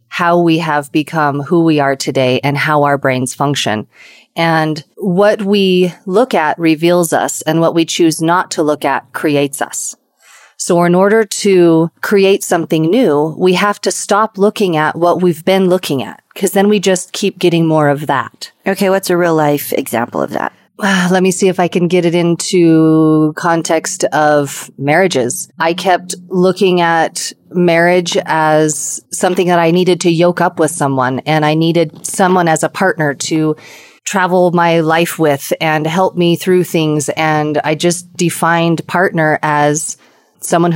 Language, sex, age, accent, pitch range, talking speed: English, female, 40-59, American, 155-185 Hz, 170 wpm